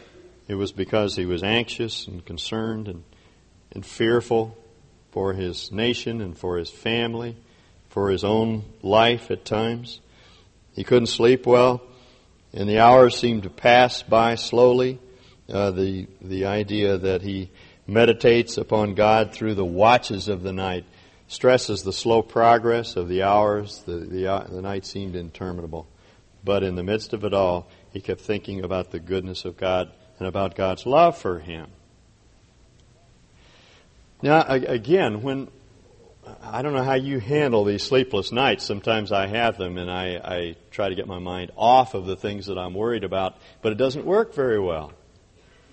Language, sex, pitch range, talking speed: English, male, 95-120 Hz, 165 wpm